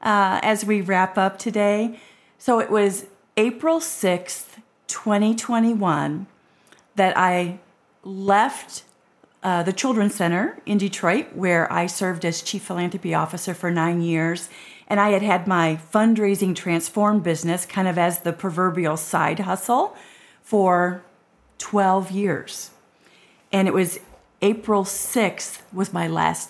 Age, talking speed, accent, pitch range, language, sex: 40-59, 130 wpm, American, 175-210 Hz, English, female